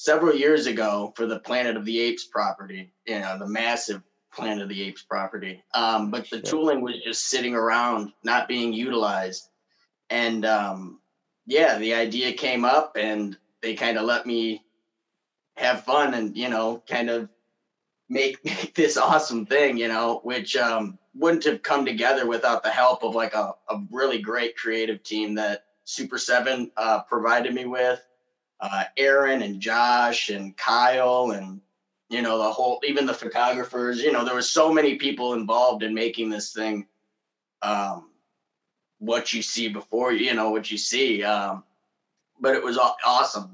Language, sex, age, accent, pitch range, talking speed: English, male, 20-39, American, 110-125 Hz, 165 wpm